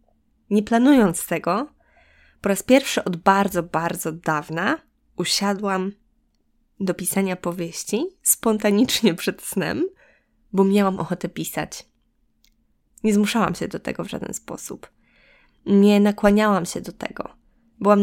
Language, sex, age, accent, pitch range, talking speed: Polish, female, 20-39, native, 185-220 Hz, 115 wpm